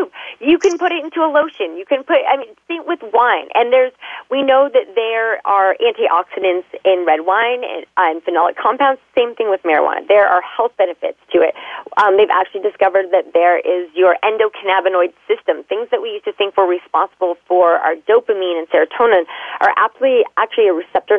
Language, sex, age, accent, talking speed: English, female, 30-49, American, 185 wpm